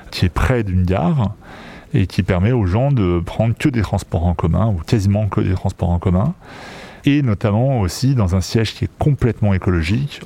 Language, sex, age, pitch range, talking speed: French, male, 30-49, 95-120 Hz, 200 wpm